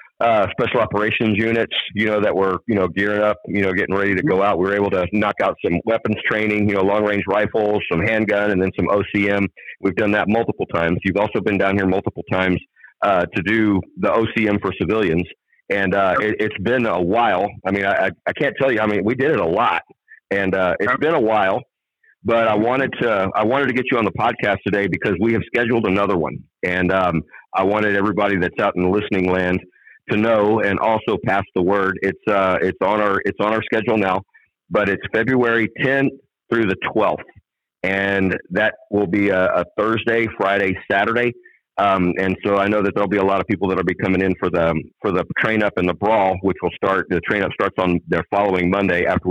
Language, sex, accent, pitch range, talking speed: English, male, American, 95-110 Hz, 225 wpm